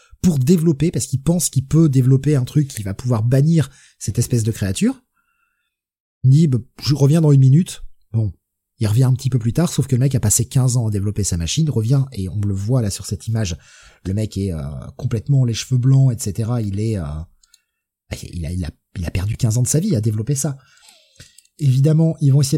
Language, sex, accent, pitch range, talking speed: French, male, French, 110-145 Hz, 225 wpm